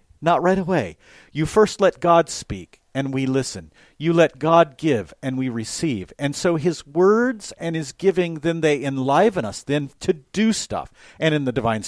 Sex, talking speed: male, 185 wpm